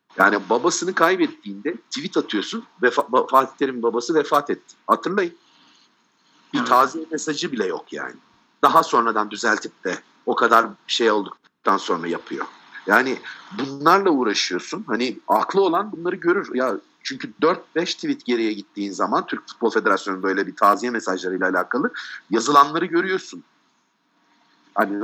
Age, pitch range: 50-69, 120-175 Hz